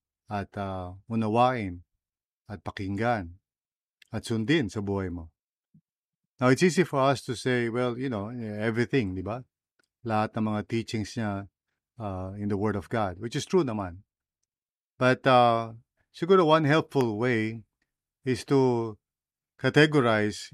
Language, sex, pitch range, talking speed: English, male, 105-125 Hz, 135 wpm